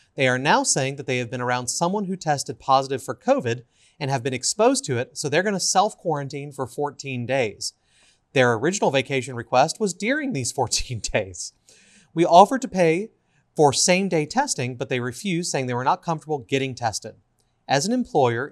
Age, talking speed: 30-49, 185 wpm